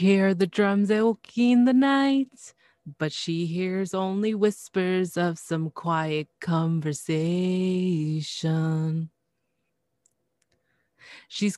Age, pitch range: 30-49, 175-240 Hz